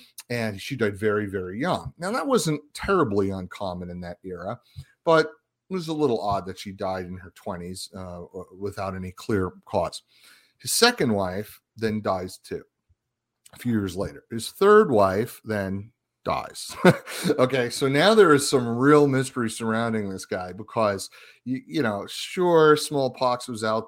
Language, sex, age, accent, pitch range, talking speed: English, male, 30-49, American, 100-125 Hz, 165 wpm